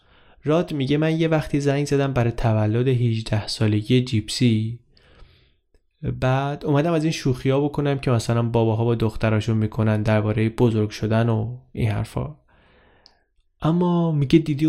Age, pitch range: 20-39, 110-140 Hz